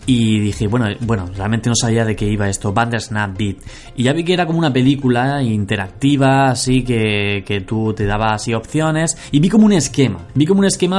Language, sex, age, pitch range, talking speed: Spanish, male, 20-39, 110-140 Hz, 215 wpm